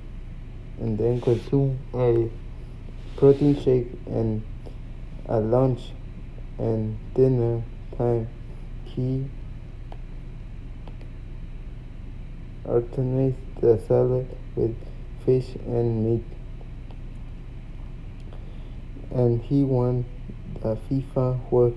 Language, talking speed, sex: English, 75 wpm, male